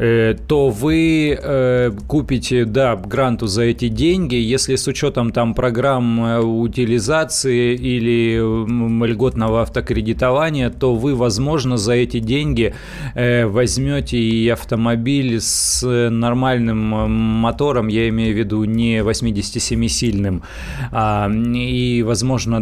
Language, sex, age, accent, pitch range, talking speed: Russian, male, 30-49, native, 110-130 Hz, 100 wpm